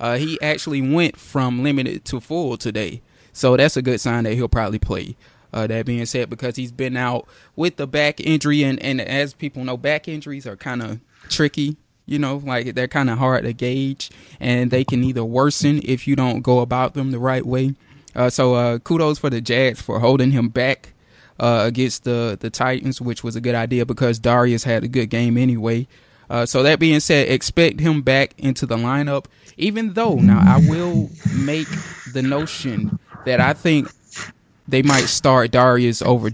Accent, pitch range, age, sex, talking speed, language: American, 120-140 Hz, 20-39, male, 195 wpm, English